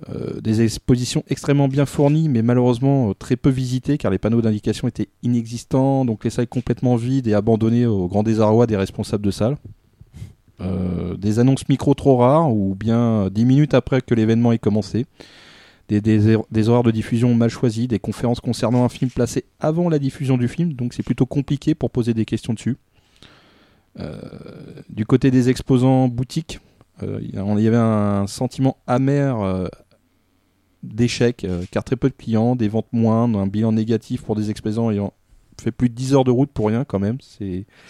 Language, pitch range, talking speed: French, 105-130 Hz, 190 wpm